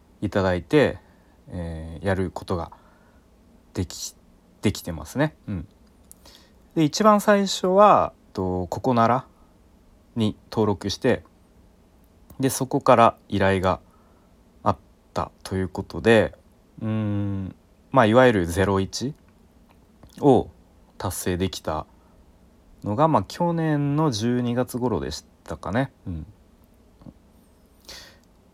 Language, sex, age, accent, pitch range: Japanese, male, 30-49, native, 90-125 Hz